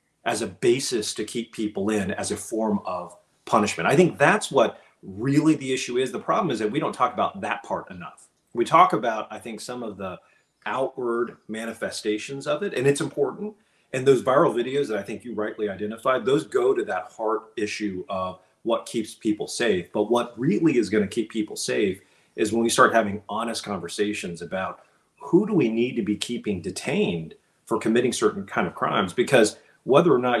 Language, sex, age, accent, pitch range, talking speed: English, male, 40-59, American, 105-140 Hz, 200 wpm